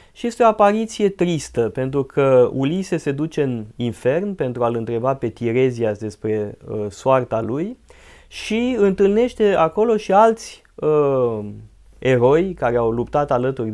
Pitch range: 125-185 Hz